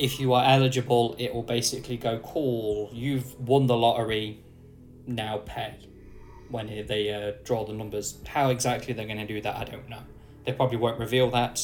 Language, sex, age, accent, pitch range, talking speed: English, male, 10-29, British, 110-130 Hz, 185 wpm